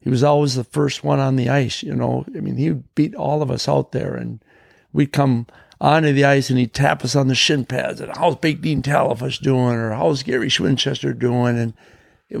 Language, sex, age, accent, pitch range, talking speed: English, male, 60-79, American, 130-175 Hz, 230 wpm